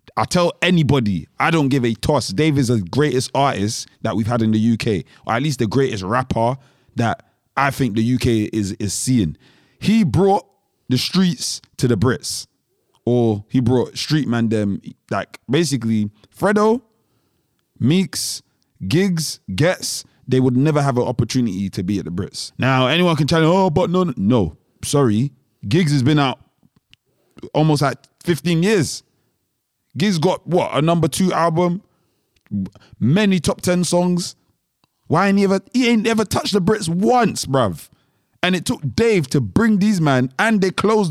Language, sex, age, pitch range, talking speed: English, male, 20-39, 110-165 Hz, 170 wpm